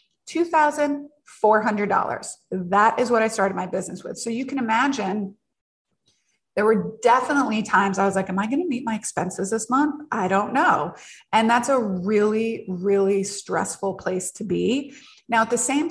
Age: 30-49